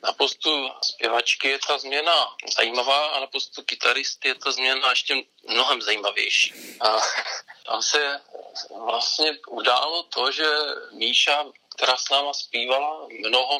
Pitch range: 120-140 Hz